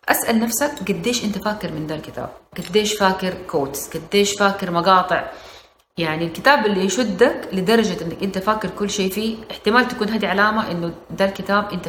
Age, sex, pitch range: 30-49, female, 180-235 Hz